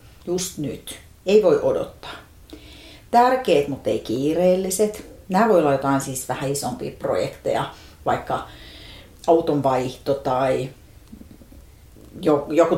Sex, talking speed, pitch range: female, 100 wpm, 145-235 Hz